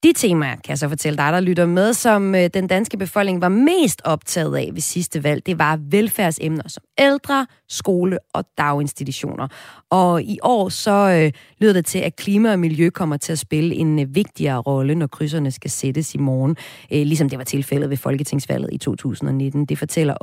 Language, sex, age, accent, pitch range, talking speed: Danish, female, 30-49, native, 145-210 Hz, 195 wpm